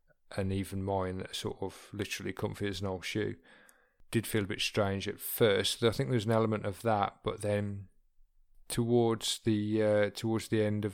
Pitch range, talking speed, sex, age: 100-115 Hz, 190 wpm, male, 30-49